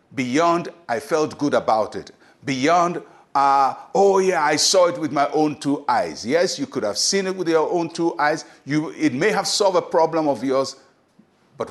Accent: Nigerian